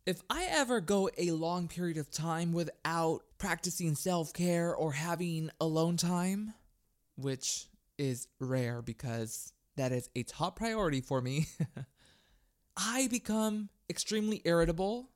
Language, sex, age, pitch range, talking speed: English, male, 20-39, 155-215 Hz, 125 wpm